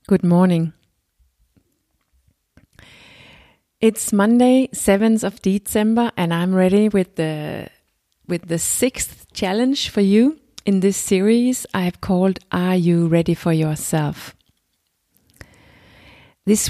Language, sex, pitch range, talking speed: English, female, 175-215 Hz, 105 wpm